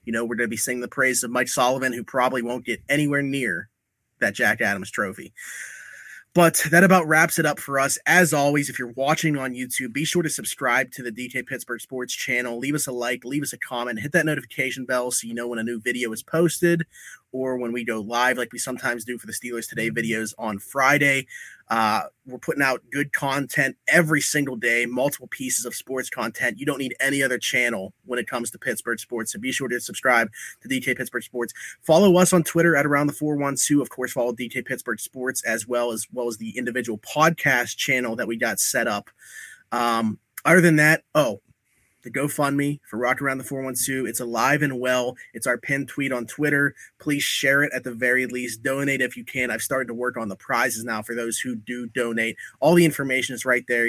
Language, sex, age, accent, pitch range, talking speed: English, male, 30-49, American, 120-140 Hz, 225 wpm